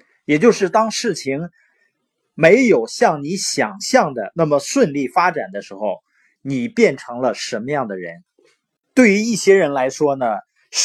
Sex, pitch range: male, 135-225 Hz